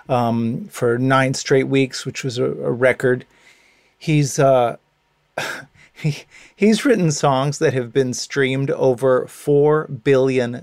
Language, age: English, 30-49